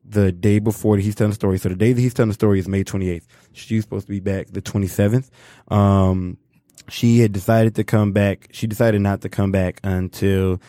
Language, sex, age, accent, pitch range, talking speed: English, male, 20-39, American, 95-115 Hz, 235 wpm